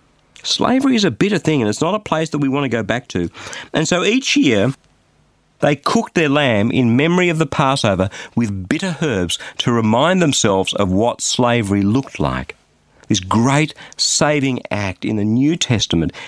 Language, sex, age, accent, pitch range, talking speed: English, male, 50-69, Australian, 100-150 Hz, 180 wpm